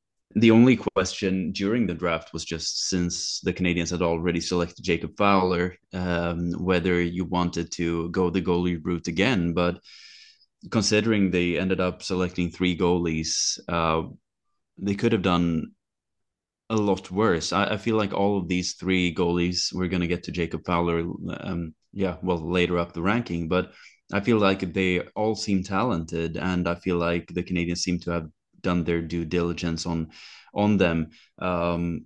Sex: male